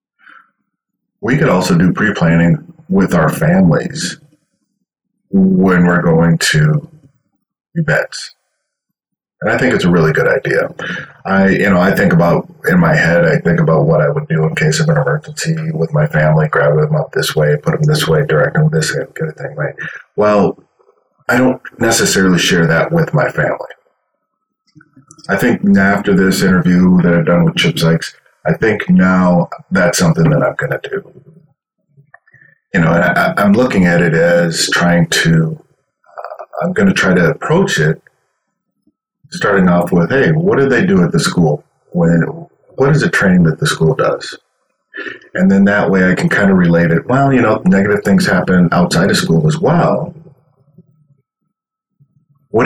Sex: male